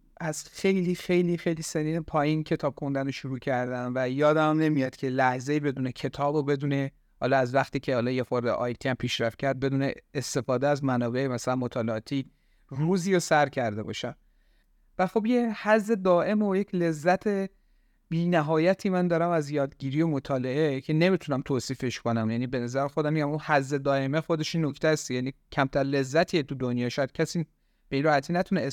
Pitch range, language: 135-175 Hz, English